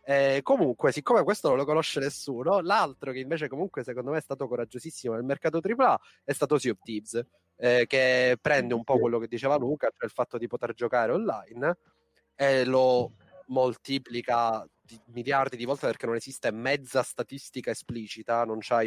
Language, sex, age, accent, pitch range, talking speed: Italian, male, 30-49, native, 115-135 Hz, 175 wpm